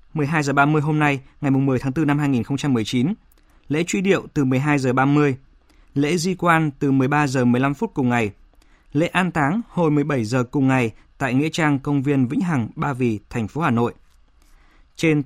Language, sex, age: Vietnamese, male, 20-39